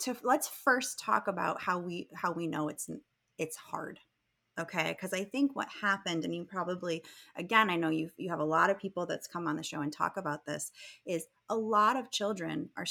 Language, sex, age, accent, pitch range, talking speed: English, female, 30-49, American, 165-225 Hz, 220 wpm